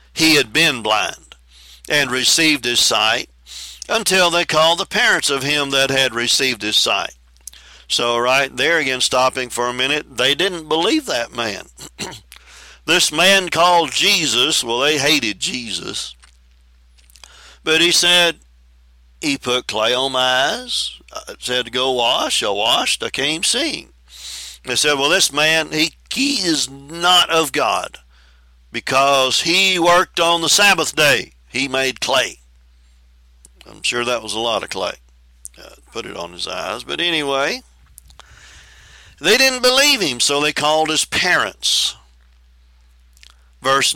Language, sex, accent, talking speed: English, male, American, 145 wpm